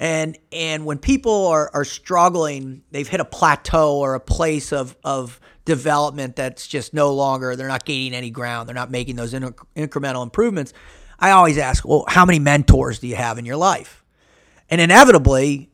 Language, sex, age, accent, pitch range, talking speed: English, male, 40-59, American, 135-180 Hz, 185 wpm